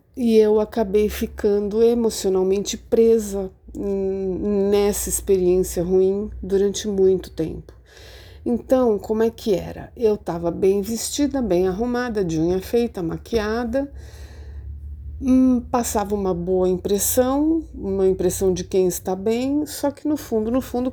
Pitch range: 185-230 Hz